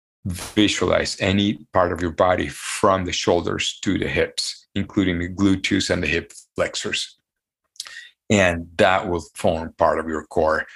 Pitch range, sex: 85-100 Hz, male